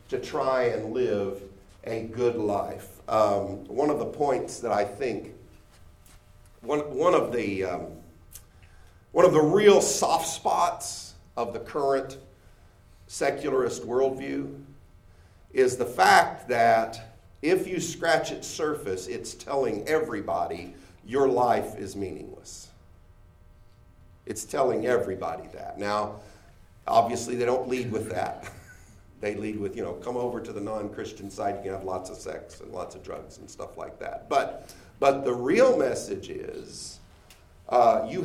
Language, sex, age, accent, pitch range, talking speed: English, male, 50-69, American, 95-140 Hz, 135 wpm